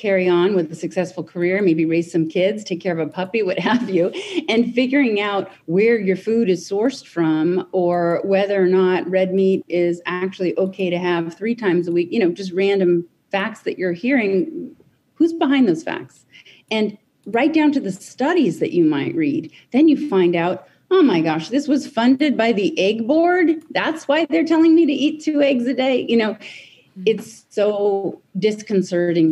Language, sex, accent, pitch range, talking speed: English, female, American, 170-220 Hz, 190 wpm